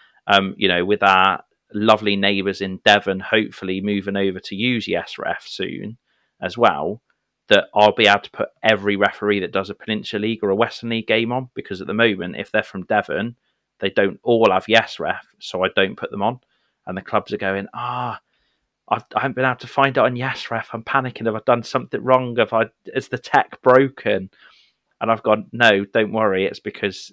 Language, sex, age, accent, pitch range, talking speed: English, male, 30-49, British, 100-120 Hz, 210 wpm